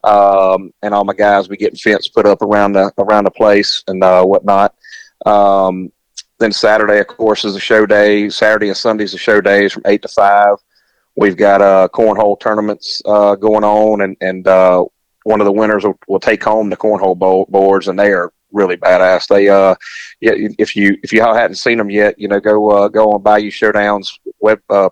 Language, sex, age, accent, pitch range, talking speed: English, male, 30-49, American, 100-110 Hz, 210 wpm